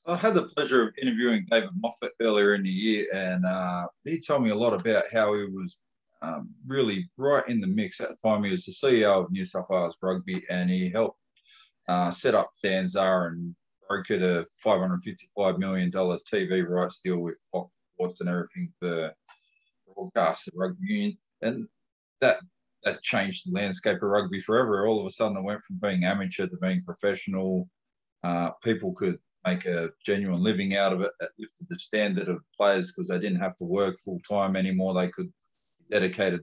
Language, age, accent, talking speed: English, 20-39, Australian, 190 wpm